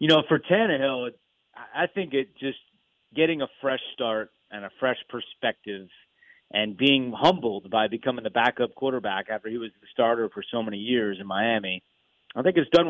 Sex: male